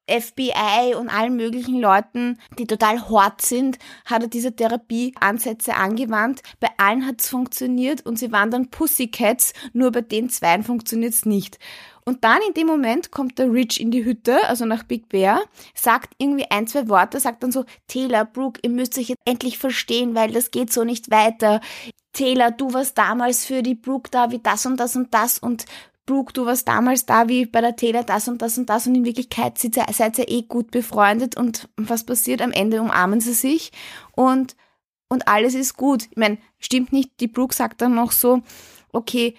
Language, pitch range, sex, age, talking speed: German, 225-250 Hz, female, 20-39, 200 wpm